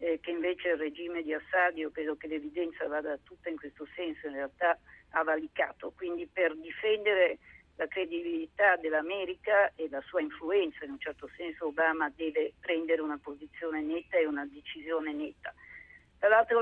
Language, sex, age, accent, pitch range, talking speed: Italian, female, 50-69, native, 160-200 Hz, 160 wpm